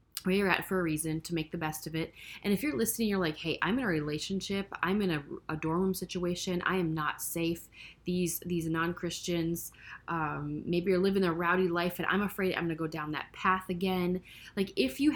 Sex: female